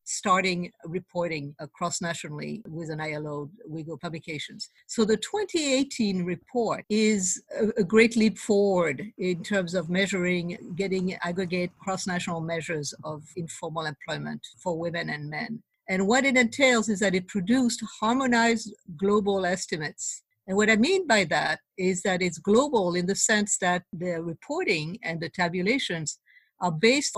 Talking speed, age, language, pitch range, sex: 140 wpm, 50-69, English, 175-220 Hz, female